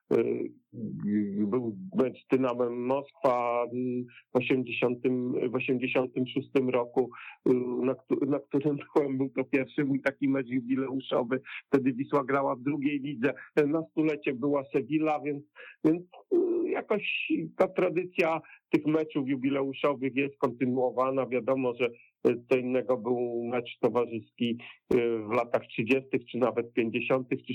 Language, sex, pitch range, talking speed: Polish, male, 120-140 Hz, 115 wpm